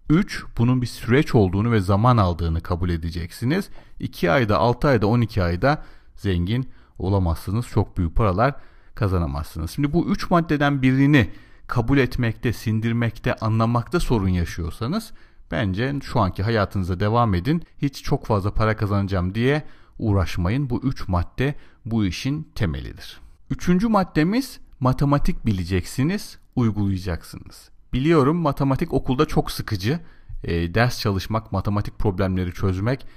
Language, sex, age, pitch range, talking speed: Turkish, male, 40-59, 95-135 Hz, 125 wpm